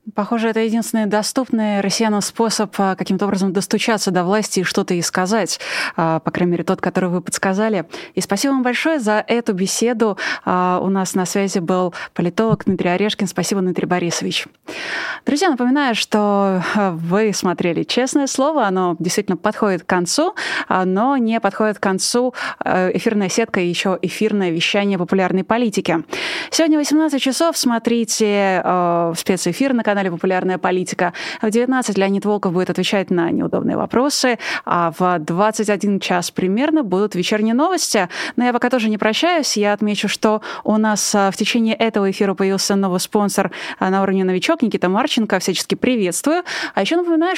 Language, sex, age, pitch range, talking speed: Russian, female, 20-39, 185-235 Hz, 150 wpm